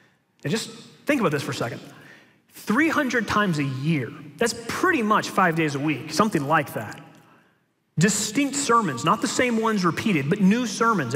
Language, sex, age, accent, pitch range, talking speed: English, male, 30-49, American, 155-215 Hz, 170 wpm